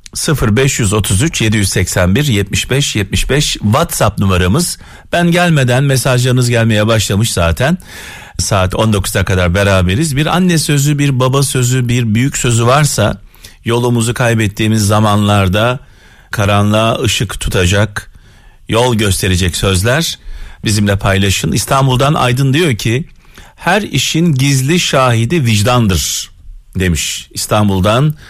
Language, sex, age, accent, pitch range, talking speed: Turkish, male, 40-59, native, 100-140 Hz, 100 wpm